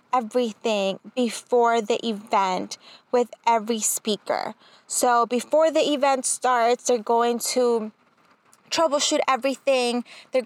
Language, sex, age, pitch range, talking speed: English, female, 20-39, 215-250 Hz, 105 wpm